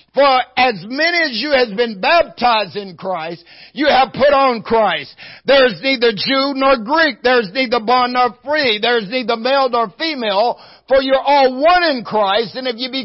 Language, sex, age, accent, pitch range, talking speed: English, male, 60-79, American, 240-300 Hz, 200 wpm